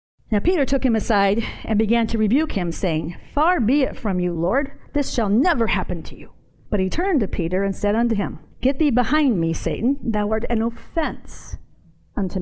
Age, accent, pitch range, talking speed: 50-69, American, 205-270 Hz, 205 wpm